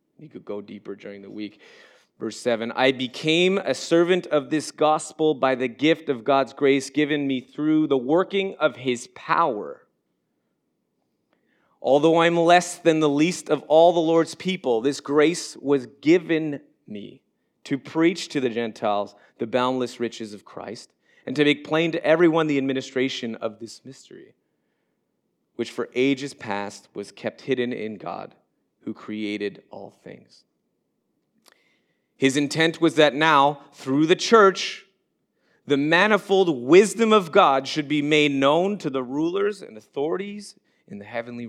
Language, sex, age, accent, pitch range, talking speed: English, male, 30-49, American, 120-160 Hz, 150 wpm